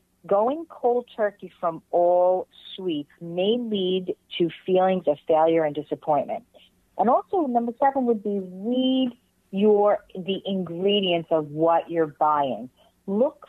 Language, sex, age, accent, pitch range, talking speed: English, female, 50-69, American, 165-220 Hz, 130 wpm